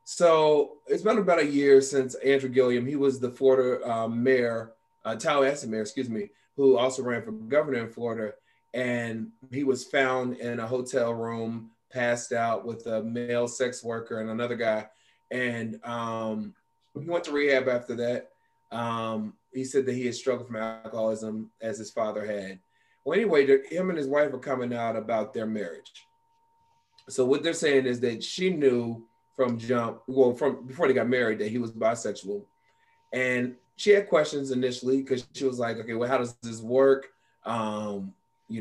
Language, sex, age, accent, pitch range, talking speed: English, male, 30-49, American, 115-140 Hz, 180 wpm